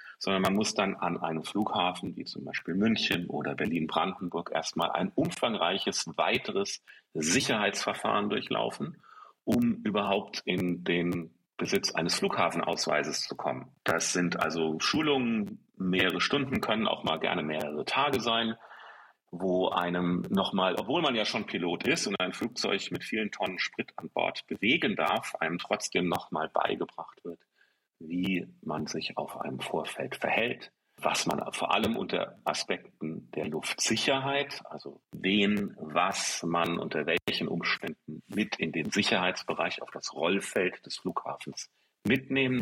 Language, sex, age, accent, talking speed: German, male, 40-59, German, 140 wpm